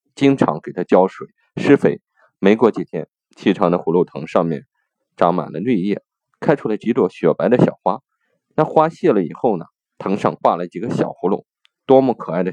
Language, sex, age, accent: Chinese, male, 20-39, native